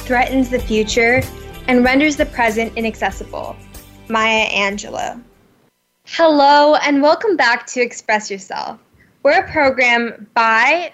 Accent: American